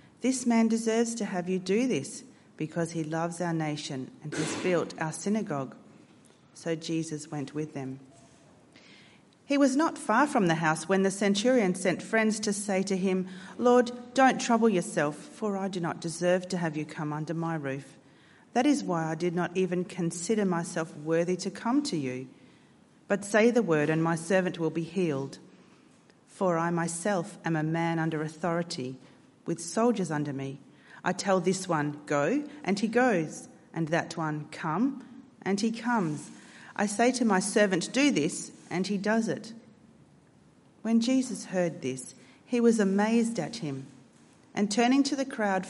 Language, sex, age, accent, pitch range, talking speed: English, female, 40-59, Australian, 160-215 Hz, 170 wpm